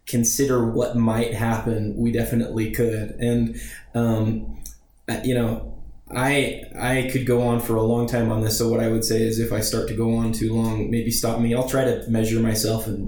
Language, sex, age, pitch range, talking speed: English, male, 20-39, 110-125 Hz, 205 wpm